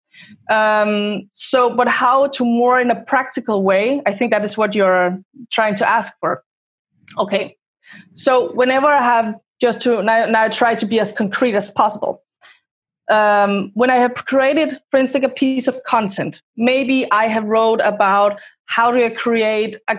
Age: 20-39